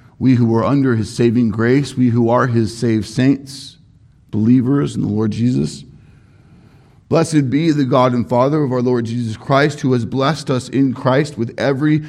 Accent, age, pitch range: American, 50-69, 110-145 Hz